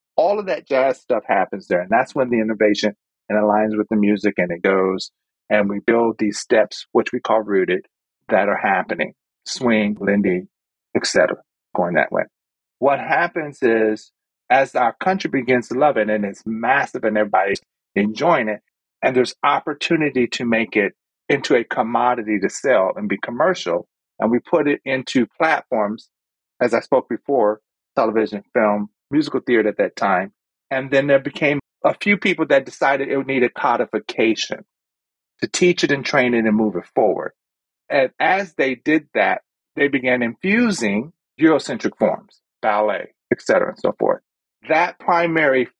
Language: English